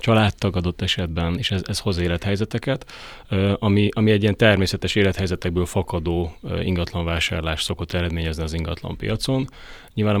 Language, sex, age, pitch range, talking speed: Hungarian, male, 30-49, 90-105 Hz, 130 wpm